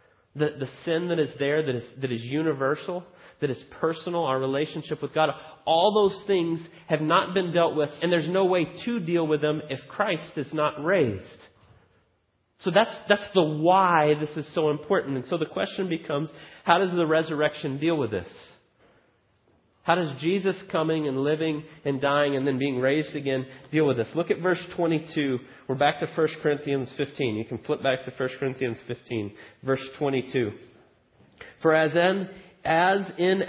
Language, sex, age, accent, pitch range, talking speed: English, male, 30-49, American, 130-165 Hz, 185 wpm